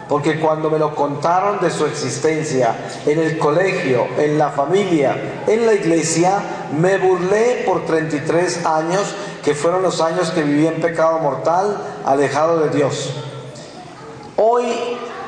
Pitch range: 160-195 Hz